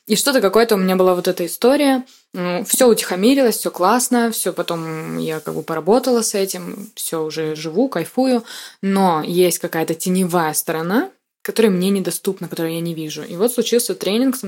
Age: 20-39